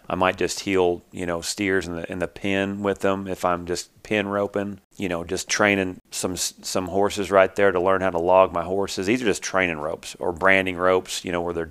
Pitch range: 90-100 Hz